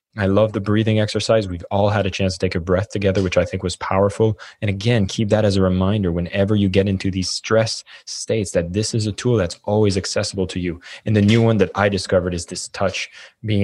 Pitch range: 95-105 Hz